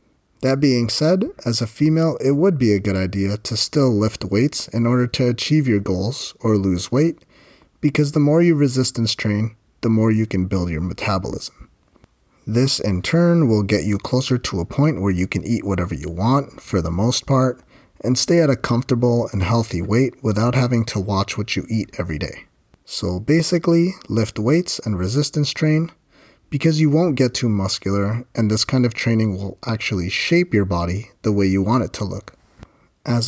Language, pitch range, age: English, 100-130 Hz, 30-49